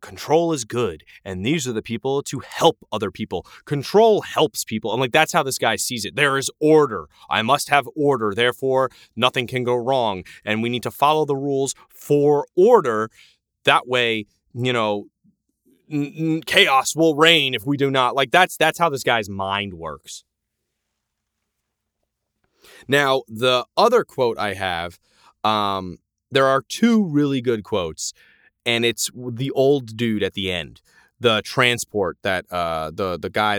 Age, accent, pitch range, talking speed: 30-49, American, 110-145 Hz, 165 wpm